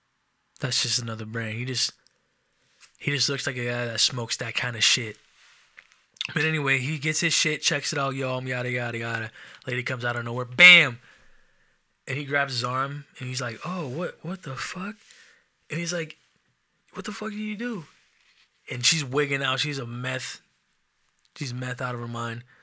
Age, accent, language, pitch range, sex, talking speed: 20-39, American, English, 120-145 Hz, male, 190 wpm